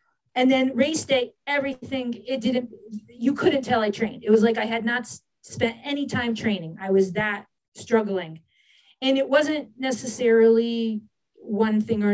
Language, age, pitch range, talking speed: English, 40-59, 205-255 Hz, 165 wpm